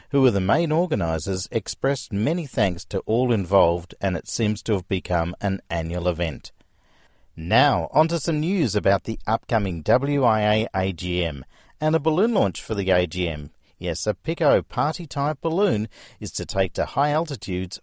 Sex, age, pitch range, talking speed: male, 50-69, 95-140 Hz, 160 wpm